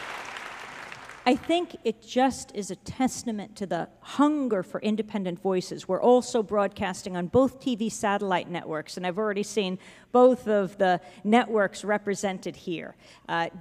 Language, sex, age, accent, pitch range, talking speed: English, female, 50-69, American, 180-225 Hz, 140 wpm